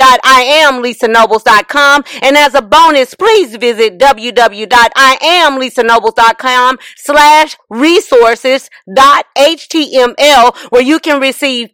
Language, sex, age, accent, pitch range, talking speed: English, female, 40-59, American, 235-300 Hz, 95 wpm